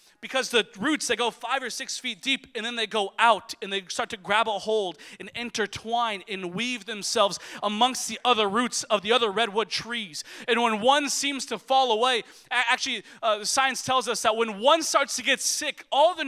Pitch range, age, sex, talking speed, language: 220-325 Hz, 30-49, male, 215 wpm, English